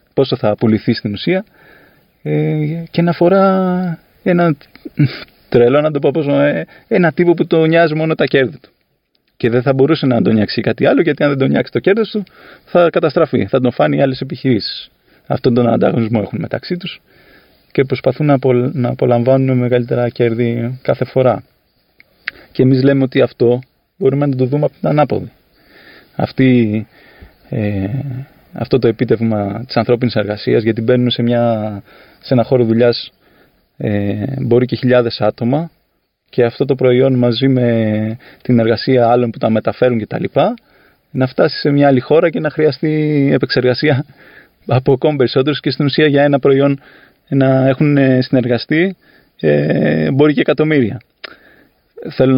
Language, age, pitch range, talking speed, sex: Greek, 20-39, 120-150 Hz, 160 wpm, male